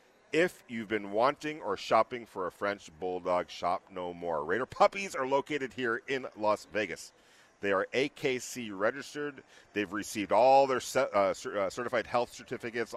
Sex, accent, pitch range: male, American, 105-135 Hz